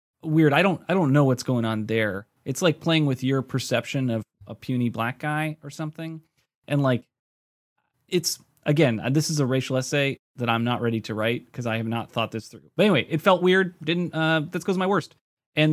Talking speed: 220 wpm